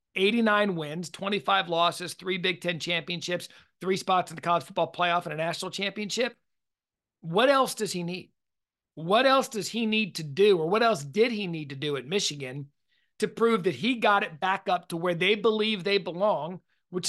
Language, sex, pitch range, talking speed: English, male, 165-210 Hz, 195 wpm